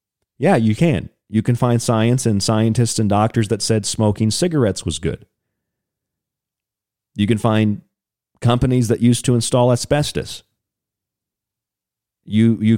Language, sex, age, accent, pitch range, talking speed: English, male, 40-59, American, 105-140 Hz, 130 wpm